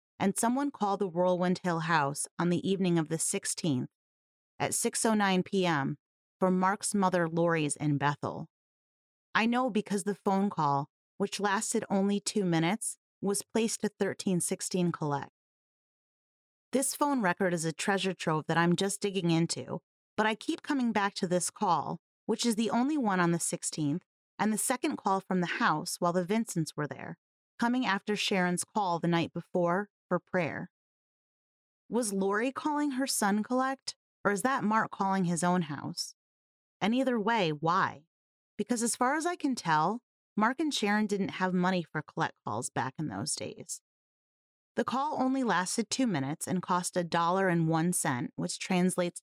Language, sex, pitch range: English, female, 170-220 Hz